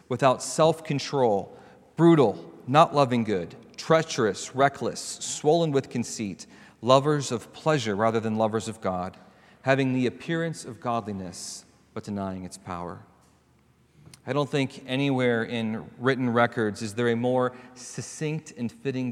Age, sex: 40-59, male